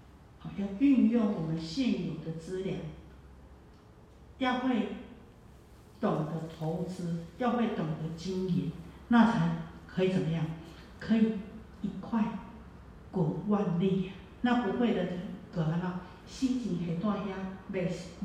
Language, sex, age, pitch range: Chinese, female, 50-69, 185-255 Hz